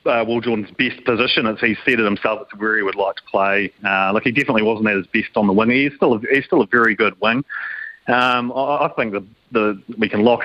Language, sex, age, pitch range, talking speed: English, male, 30-49, 105-120 Hz, 270 wpm